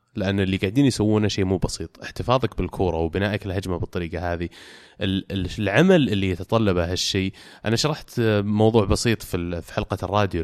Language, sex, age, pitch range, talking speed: Arabic, male, 20-39, 95-130 Hz, 145 wpm